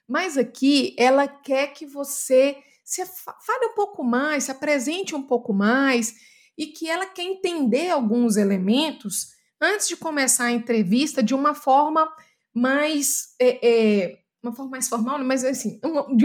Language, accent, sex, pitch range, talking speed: Portuguese, Brazilian, female, 225-300 Hz, 155 wpm